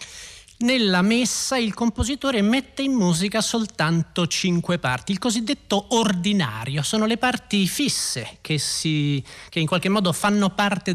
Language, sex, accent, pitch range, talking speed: Italian, male, native, 145-210 Hz, 135 wpm